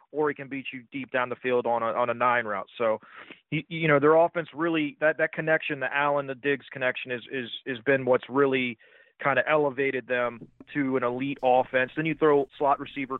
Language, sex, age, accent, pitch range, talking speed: English, male, 30-49, American, 130-150 Hz, 225 wpm